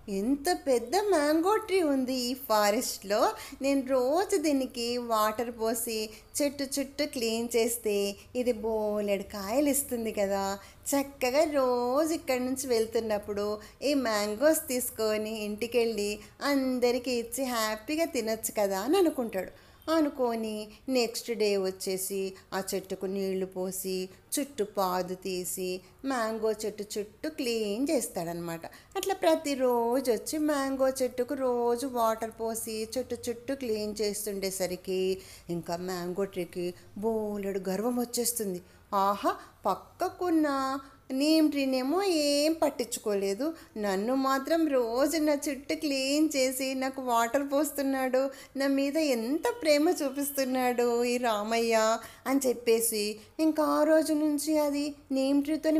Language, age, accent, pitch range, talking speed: Telugu, 20-39, native, 215-285 Hz, 110 wpm